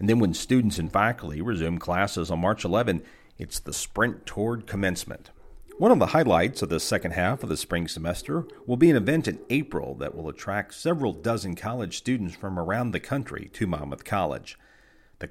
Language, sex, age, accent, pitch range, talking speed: English, male, 50-69, American, 85-125 Hz, 190 wpm